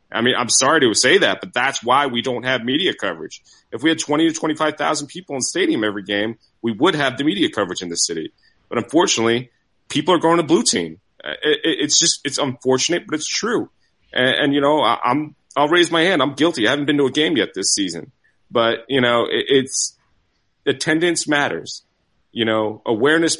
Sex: male